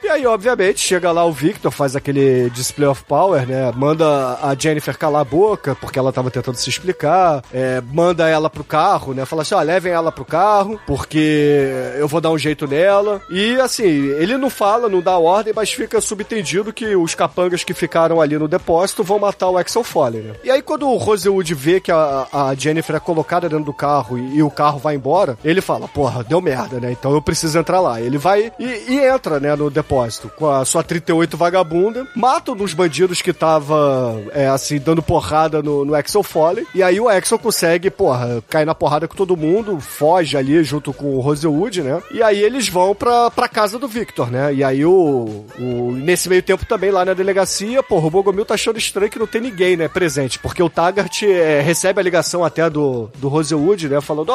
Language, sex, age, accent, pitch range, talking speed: Portuguese, male, 30-49, Brazilian, 145-195 Hz, 210 wpm